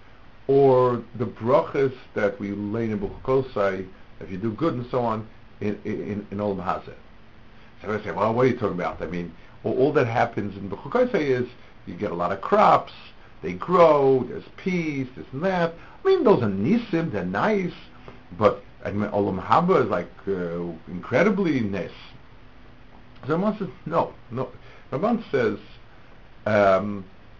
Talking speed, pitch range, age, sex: 160 wpm, 110-135 Hz, 60-79, male